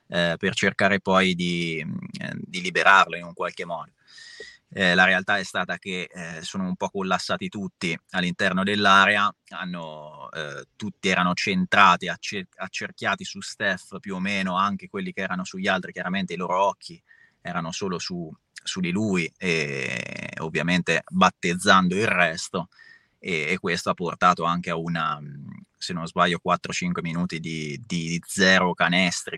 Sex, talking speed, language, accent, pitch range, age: male, 145 wpm, Italian, native, 85-105 Hz, 20-39